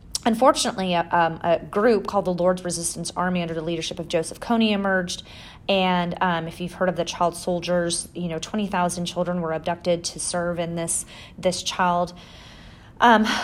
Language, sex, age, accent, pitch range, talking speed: English, female, 30-49, American, 170-200 Hz, 175 wpm